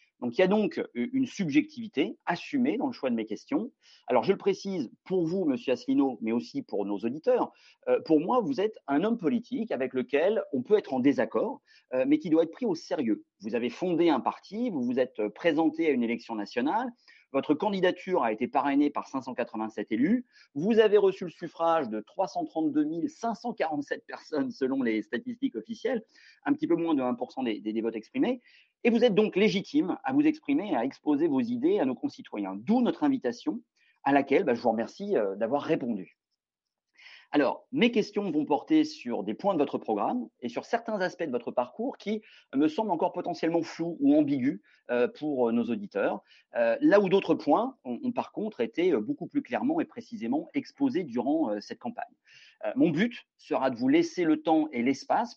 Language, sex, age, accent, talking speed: French, male, 40-59, French, 190 wpm